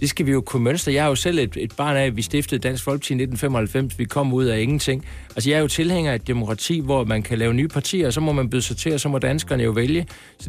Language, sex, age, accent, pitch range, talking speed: Danish, male, 60-79, native, 110-145 Hz, 310 wpm